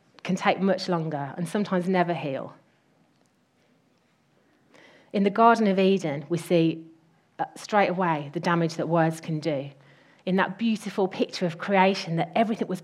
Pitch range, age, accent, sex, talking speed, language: 160-200 Hz, 30-49, British, female, 150 wpm, English